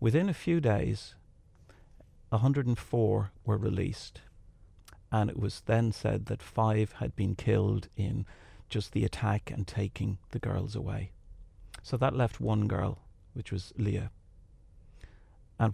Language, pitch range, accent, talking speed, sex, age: English, 100-115 Hz, British, 135 wpm, male, 40-59